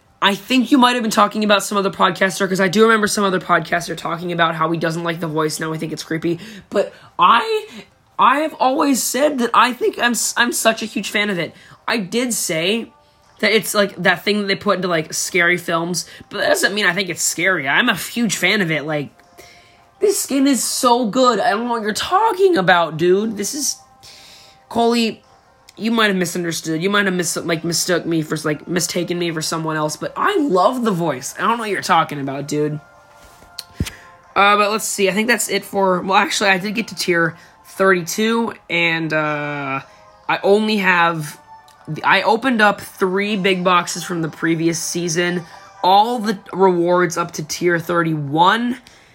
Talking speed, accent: 200 wpm, American